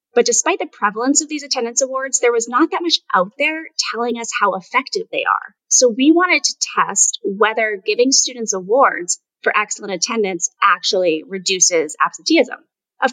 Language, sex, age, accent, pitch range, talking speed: English, female, 30-49, American, 195-285 Hz, 170 wpm